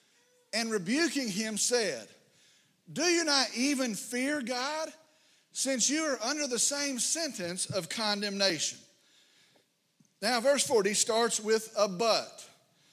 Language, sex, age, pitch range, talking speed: English, male, 40-59, 210-260 Hz, 120 wpm